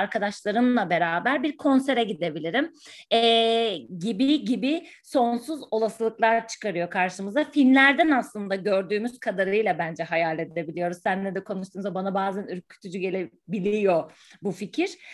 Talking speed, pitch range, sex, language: 110 wpm, 195-245 Hz, female, Turkish